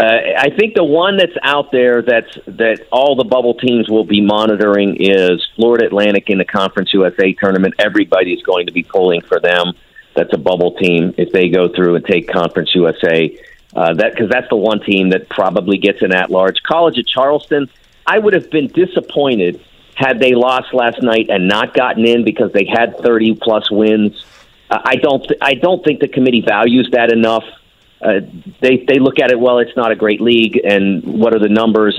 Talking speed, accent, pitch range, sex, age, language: 200 wpm, American, 105-135 Hz, male, 50-69, English